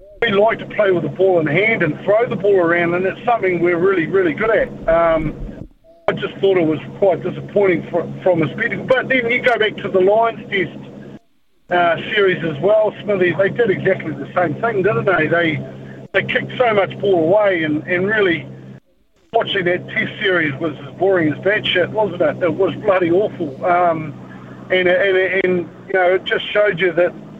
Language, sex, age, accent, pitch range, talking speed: English, male, 50-69, Australian, 160-190 Hz, 205 wpm